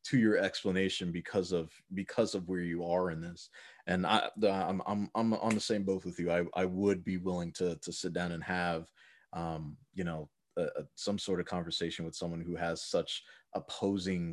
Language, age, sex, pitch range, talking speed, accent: English, 30-49, male, 90-110 Hz, 210 wpm, American